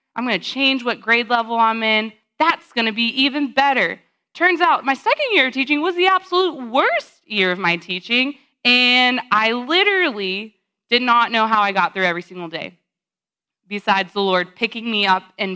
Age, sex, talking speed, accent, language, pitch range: 20-39, female, 195 wpm, American, English, 180-250 Hz